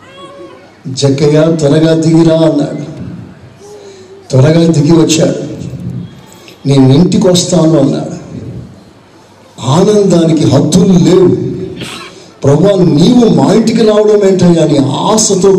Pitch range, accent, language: 140-185 Hz, native, Telugu